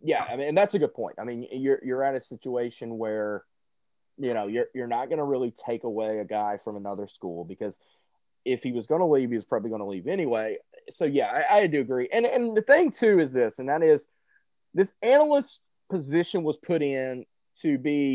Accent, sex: American, male